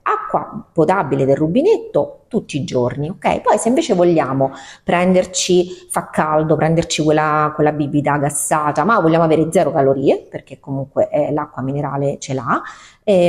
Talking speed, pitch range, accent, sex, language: 150 wpm, 140-175 Hz, native, female, Italian